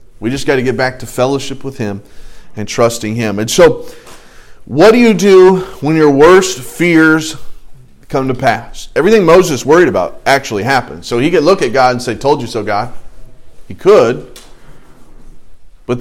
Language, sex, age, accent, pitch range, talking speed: English, male, 40-59, American, 95-125 Hz, 175 wpm